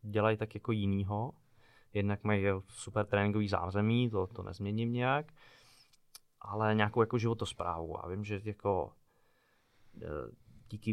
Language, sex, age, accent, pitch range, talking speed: Czech, male, 20-39, native, 100-110 Hz, 120 wpm